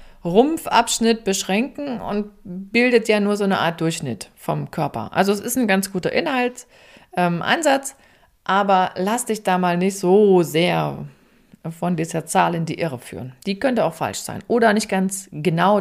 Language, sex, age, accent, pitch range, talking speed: German, female, 40-59, German, 180-225 Hz, 165 wpm